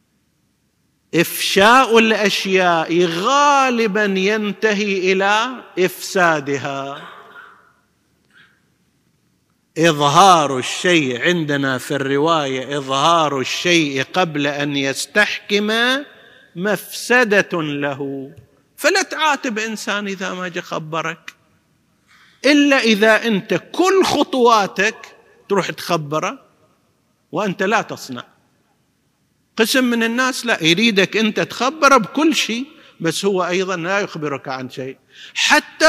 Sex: male